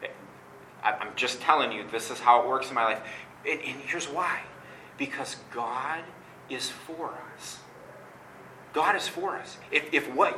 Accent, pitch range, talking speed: American, 130-180 Hz, 155 wpm